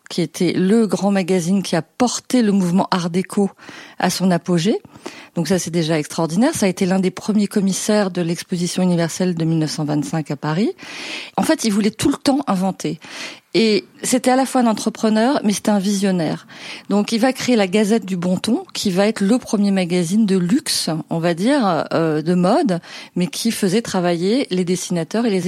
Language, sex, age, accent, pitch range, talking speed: French, female, 40-59, French, 175-220 Hz, 200 wpm